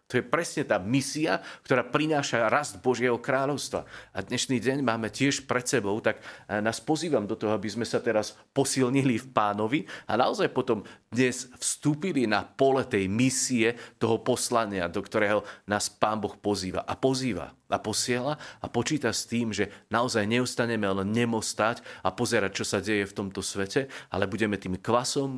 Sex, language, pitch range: male, Slovak, 90-115 Hz